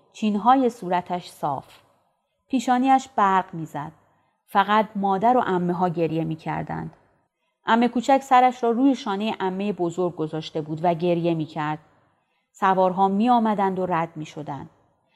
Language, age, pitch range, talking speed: Persian, 30-49, 175-225 Hz, 130 wpm